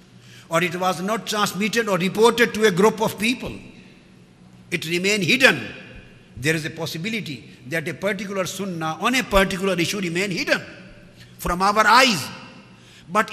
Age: 50-69